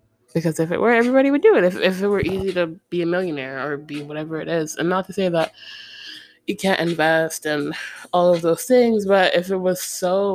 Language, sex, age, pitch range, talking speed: English, female, 20-39, 155-190 Hz, 240 wpm